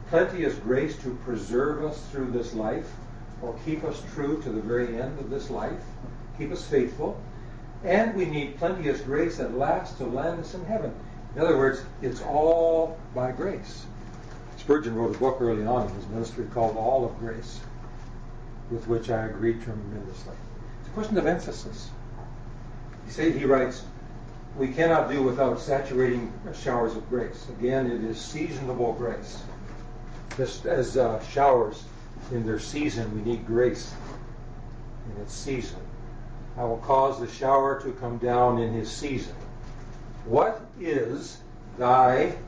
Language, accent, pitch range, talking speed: English, American, 120-135 Hz, 150 wpm